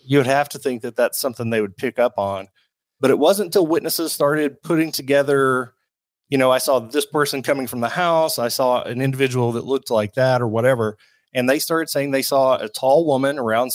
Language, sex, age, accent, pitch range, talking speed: English, male, 30-49, American, 120-145 Hz, 220 wpm